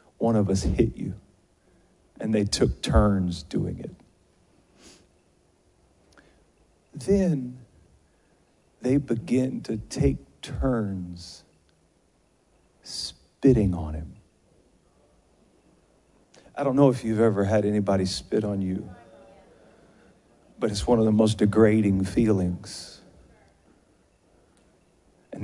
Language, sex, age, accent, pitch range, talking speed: English, male, 40-59, American, 95-115 Hz, 95 wpm